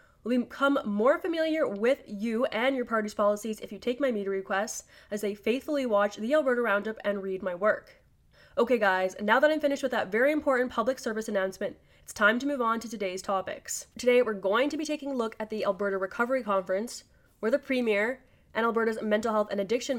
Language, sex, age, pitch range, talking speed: English, female, 20-39, 200-255 Hz, 210 wpm